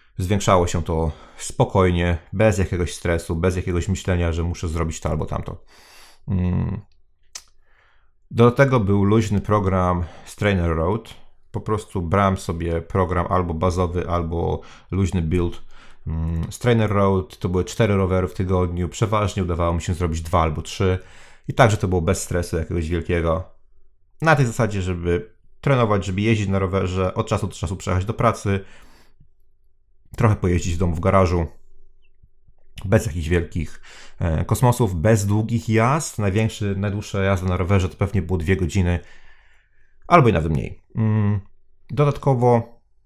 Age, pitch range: 30-49, 90-110 Hz